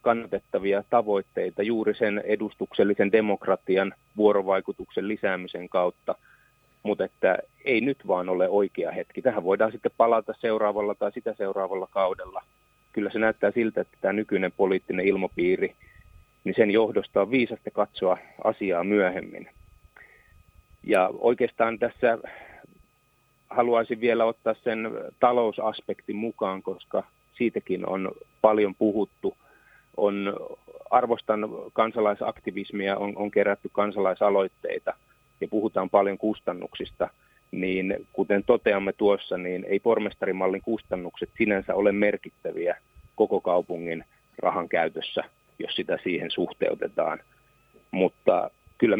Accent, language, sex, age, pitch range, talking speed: native, Finnish, male, 30-49, 100-115 Hz, 110 wpm